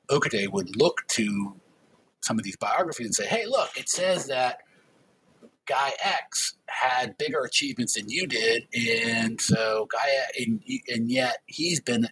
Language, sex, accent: English, male, American